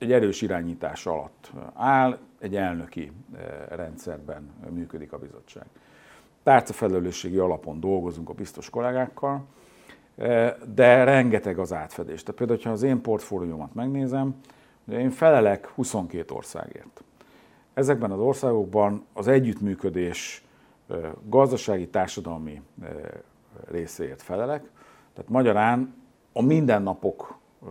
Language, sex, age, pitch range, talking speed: Hungarian, male, 50-69, 85-115 Hz, 95 wpm